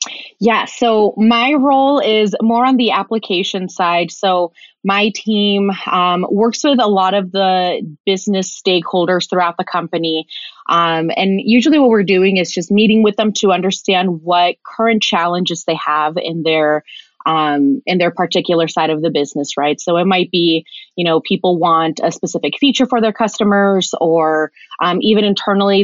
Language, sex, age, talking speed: English, female, 20-39, 165 wpm